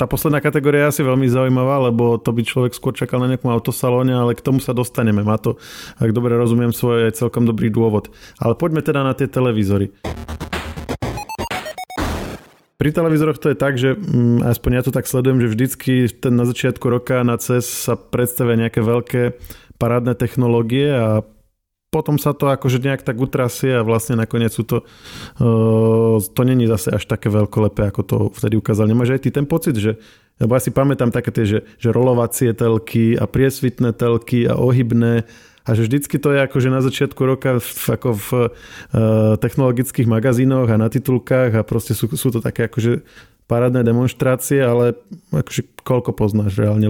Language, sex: Slovak, male